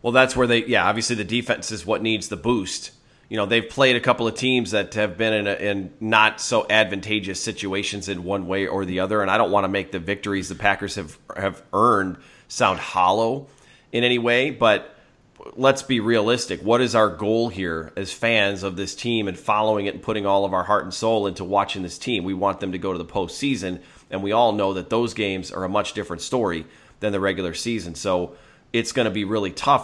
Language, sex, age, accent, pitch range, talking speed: English, male, 30-49, American, 95-115 Hz, 230 wpm